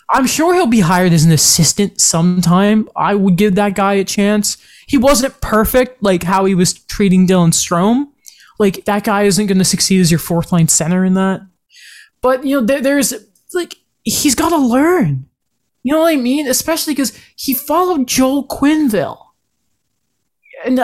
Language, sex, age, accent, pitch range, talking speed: English, male, 20-39, American, 190-255 Hz, 175 wpm